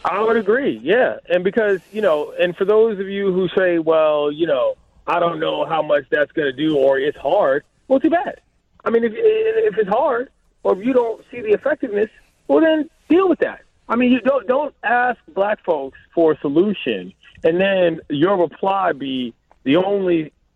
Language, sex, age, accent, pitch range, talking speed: English, male, 30-49, American, 150-235 Hz, 200 wpm